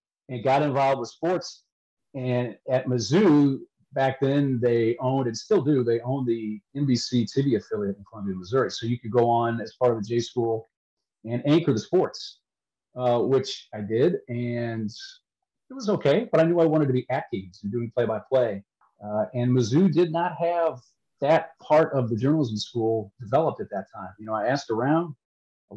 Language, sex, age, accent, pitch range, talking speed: English, male, 40-59, American, 115-145 Hz, 190 wpm